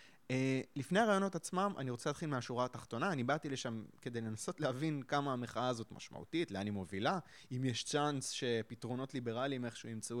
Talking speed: 165 wpm